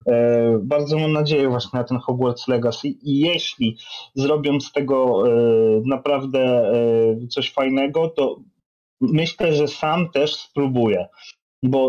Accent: native